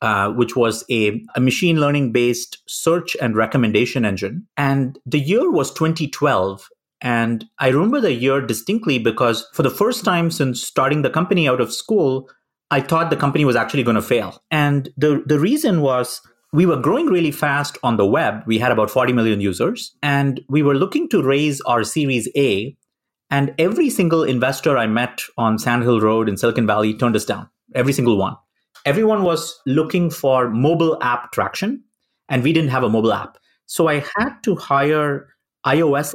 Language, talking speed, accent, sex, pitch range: English, 185 wpm, Indian, male, 120-155 Hz